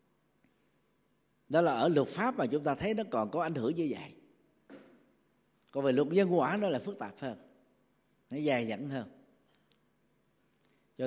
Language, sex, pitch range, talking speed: Vietnamese, male, 115-160 Hz, 170 wpm